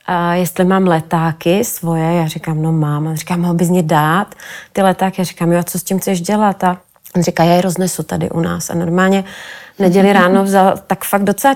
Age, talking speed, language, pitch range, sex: 30-49, 220 wpm, Czech, 175-200 Hz, female